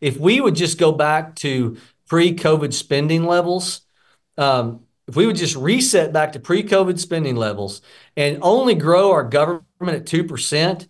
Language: English